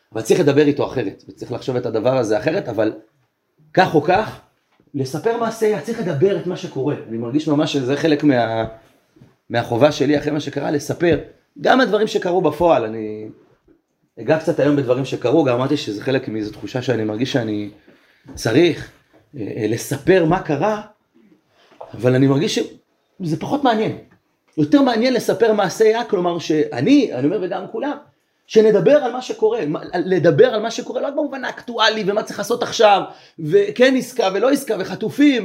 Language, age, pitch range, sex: Hebrew, 30-49, 145-220 Hz, male